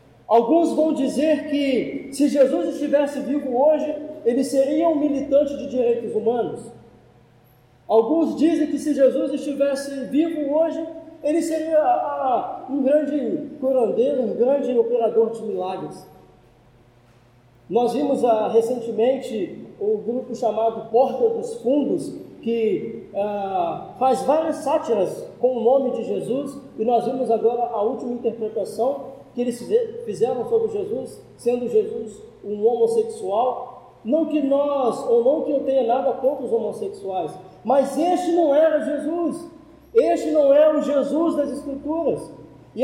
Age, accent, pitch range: 20-39, Brazilian, 240-305 Hz